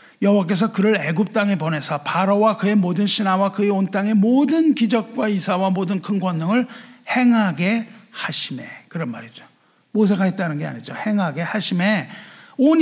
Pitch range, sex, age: 160-220 Hz, male, 50-69